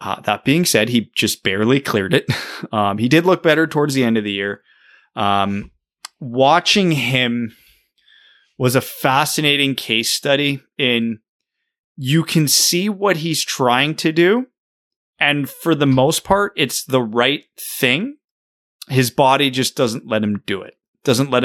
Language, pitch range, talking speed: English, 110-140 Hz, 155 wpm